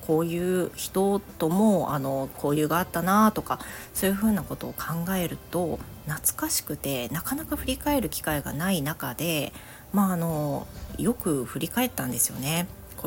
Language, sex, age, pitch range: Japanese, female, 40-59, 135-185 Hz